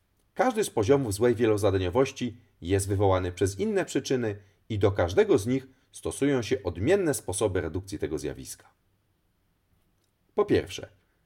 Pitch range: 95-135 Hz